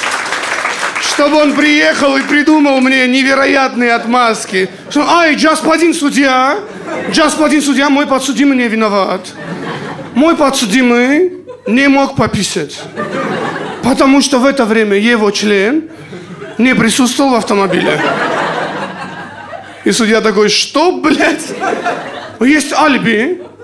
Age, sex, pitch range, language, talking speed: 40-59, male, 220-290 Hz, Russian, 105 wpm